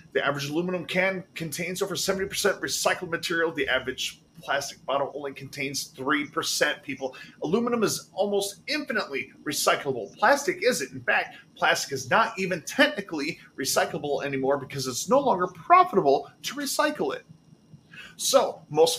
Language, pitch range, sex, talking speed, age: English, 135-200 Hz, male, 140 wpm, 30-49